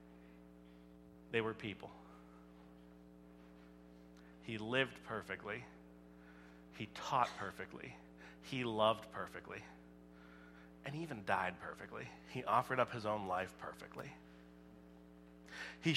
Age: 30-49